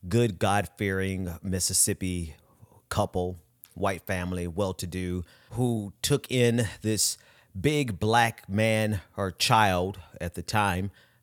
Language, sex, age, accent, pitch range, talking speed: English, male, 30-49, American, 95-120 Hz, 100 wpm